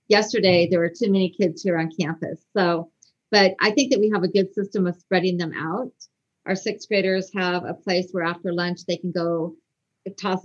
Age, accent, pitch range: 40-59, American, 165-190 Hz